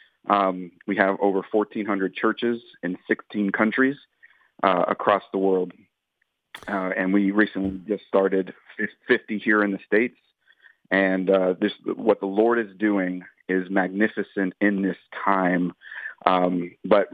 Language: English